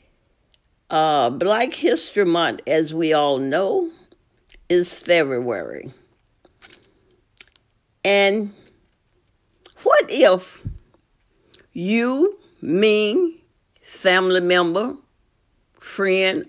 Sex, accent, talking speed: female, American, 65 wpm